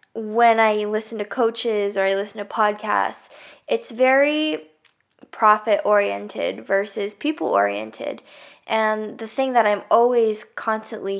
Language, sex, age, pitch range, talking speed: English, female, 10-29, 200-230 Hz, 130 wpm